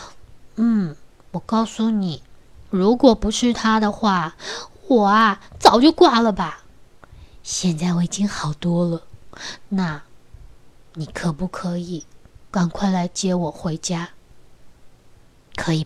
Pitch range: 165-230 Hz